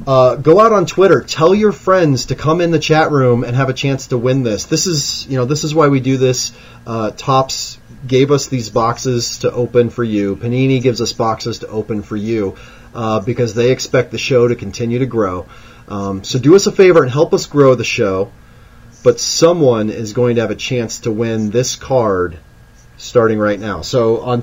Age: 30-49